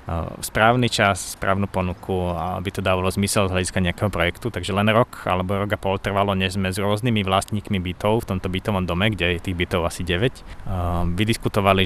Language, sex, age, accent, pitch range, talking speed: Czech, male, 20-39, native, 90-115 Hz, 180 wpm